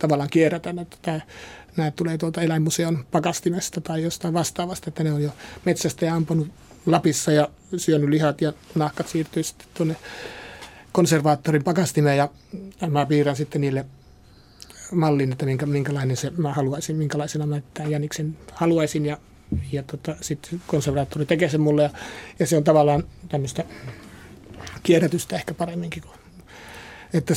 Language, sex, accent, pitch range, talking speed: Finnish, male, native, 150-170 Hz, 140 wpm